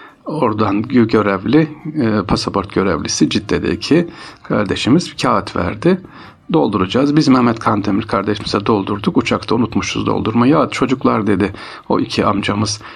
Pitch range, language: 100-130 Hz, Turkish